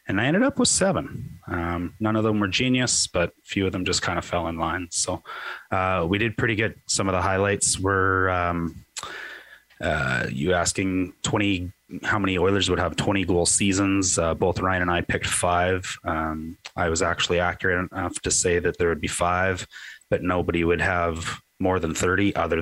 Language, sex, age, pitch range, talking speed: English, male, 30-49, 85-95 Hz, 200 wpm